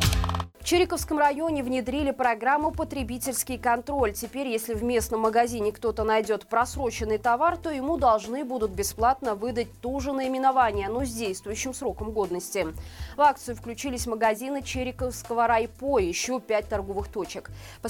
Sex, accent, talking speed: female, native, 140 wpm